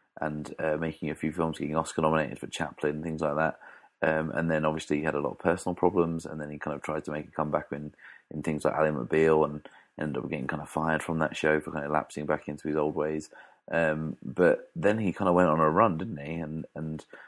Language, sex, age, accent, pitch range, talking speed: English, male, 30-49, British, 75-80 Hz, 265 wpm